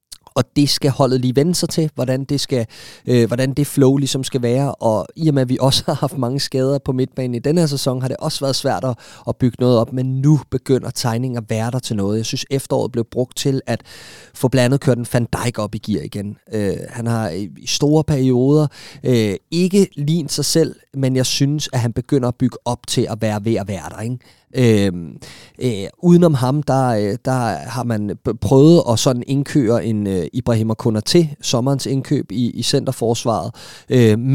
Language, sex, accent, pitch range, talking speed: Danish, male, native, 115-135 Hz, 215 wpm